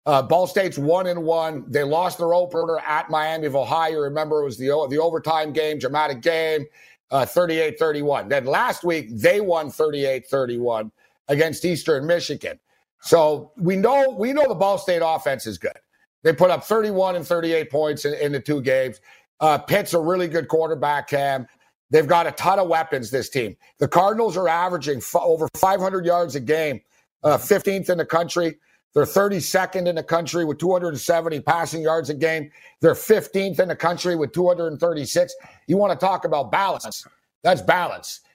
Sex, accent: male, American